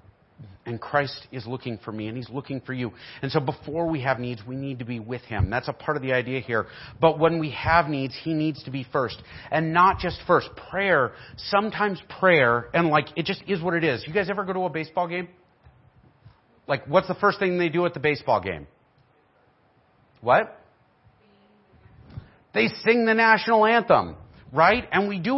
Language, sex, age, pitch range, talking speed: English, male, 40-59, 130-185 Hz, 200 wpm